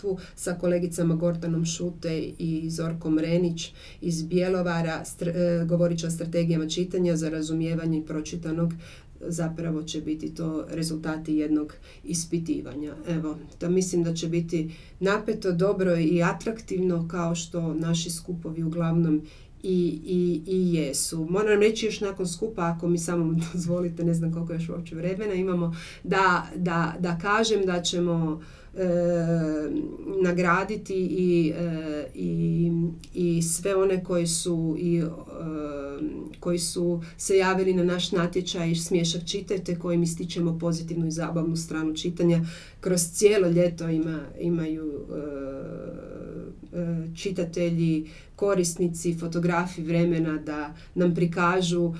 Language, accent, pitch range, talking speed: Croatian, native, 165-180 Hz, 130 wpm